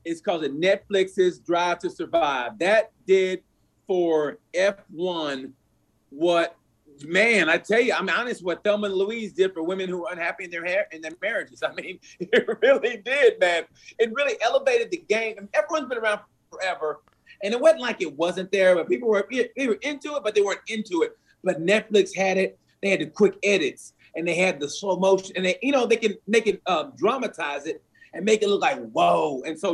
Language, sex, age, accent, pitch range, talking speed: English, male, 30-49, American, 185-265 Hz, 205 wpm